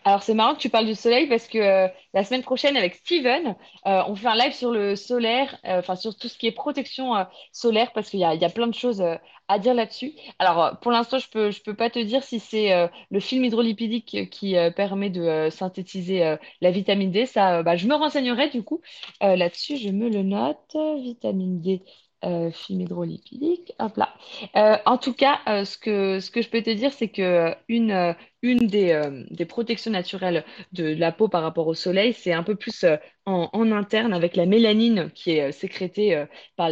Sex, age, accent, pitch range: female, 20-39, French, 180-230 Hz